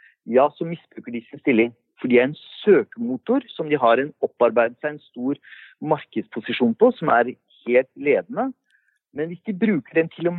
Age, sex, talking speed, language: 50-69, male, 185 wpm, English